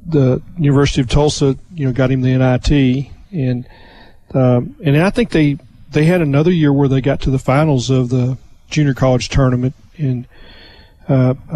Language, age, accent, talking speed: English, 40-59, American, 170 wpm